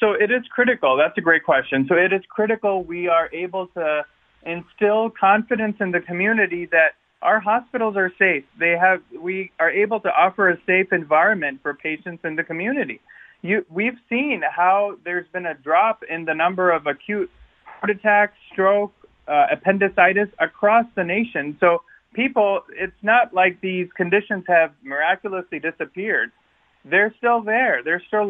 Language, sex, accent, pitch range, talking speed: English, male, American, 170-215 Hz, 165 wpm